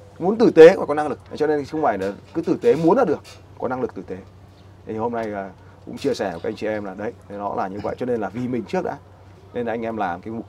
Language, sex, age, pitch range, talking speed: Vietnamese, male, 20-39, 95-120 Hz, 305 wpm